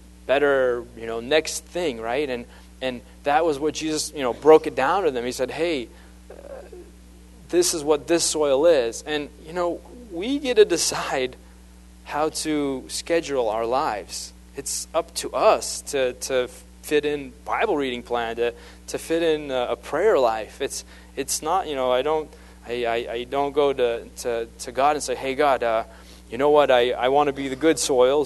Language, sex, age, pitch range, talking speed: English, male, 30-49, 115-155 Hz, 195 wpm